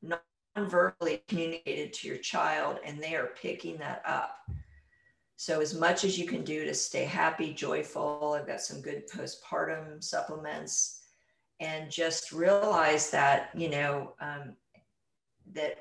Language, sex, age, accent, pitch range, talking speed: English, female, 50-69, American, 150-185 Hz, 135 wpm